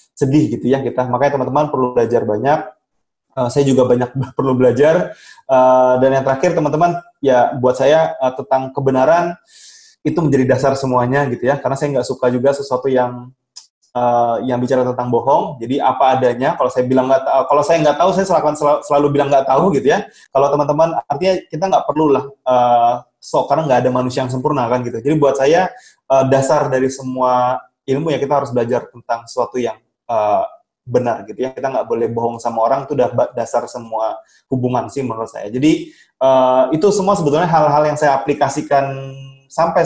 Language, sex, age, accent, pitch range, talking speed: Indonesian, male, 20-39, native, 125-150 Hz, 190 wpm